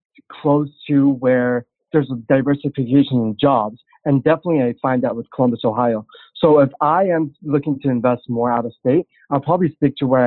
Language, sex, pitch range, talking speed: English, male, 125-145 Hz, 185 wpm